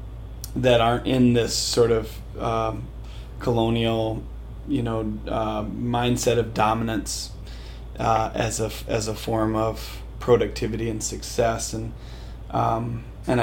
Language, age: English, 30-49